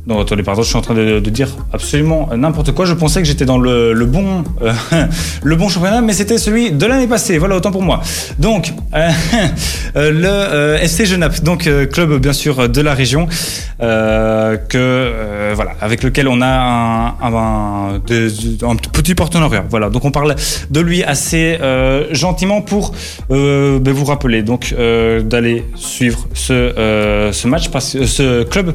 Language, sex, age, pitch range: French, male, 20-39, 120-170 Hz